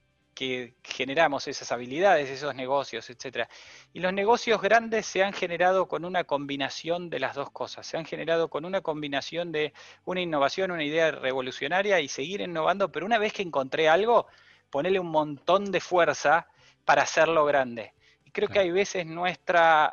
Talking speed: 170 wpm